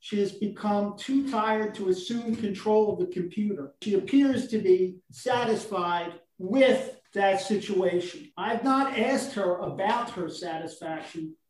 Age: 50-69